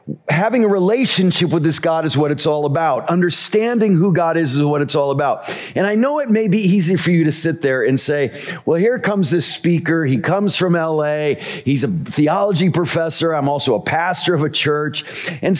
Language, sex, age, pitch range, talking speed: English, male, 40-59, 150-190 Hz, 210 wpm